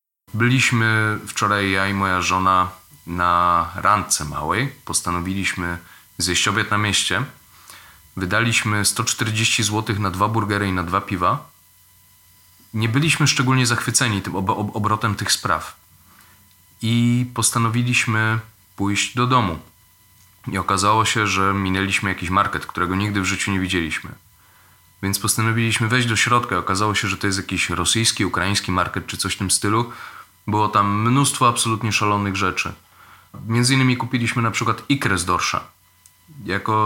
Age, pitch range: 30-49, 90-110 Hz